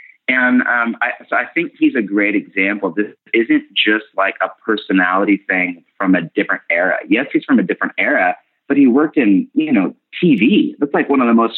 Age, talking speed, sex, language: 30-49, 200 wpm, male, English